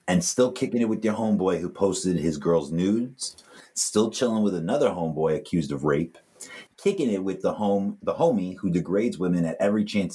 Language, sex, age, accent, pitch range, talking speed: English, male, 30-49, American, 85-120 Hz, 195 wpm